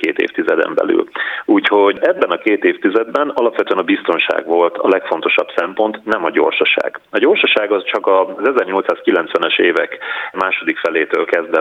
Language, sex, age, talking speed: Hungarian, male, 30-49, 145 wpm